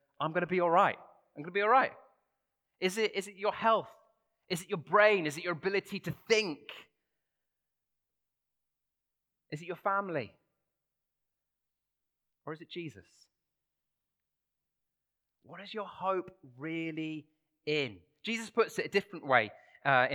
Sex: male